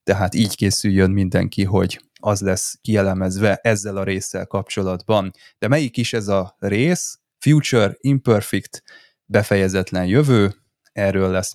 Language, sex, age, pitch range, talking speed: Hungarian, male, 20-39, 95-115 Hz, 125 wpm